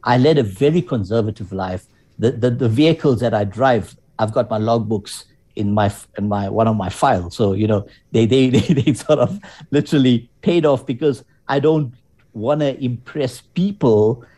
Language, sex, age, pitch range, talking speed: English, male, 60-79, 110-135 Hz, 185 wpm